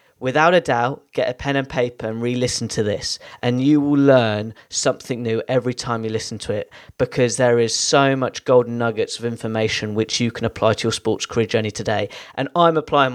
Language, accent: English, British